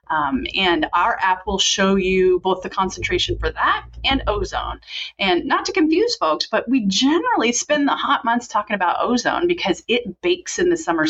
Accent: American